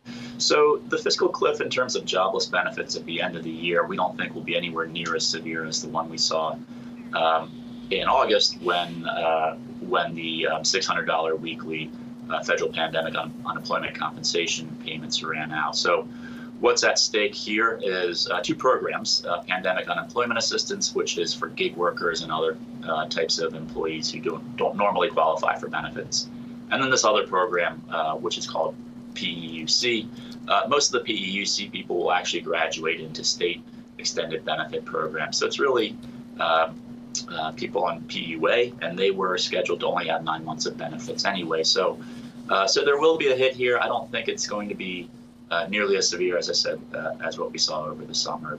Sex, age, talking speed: male, 30-49, 190 wpm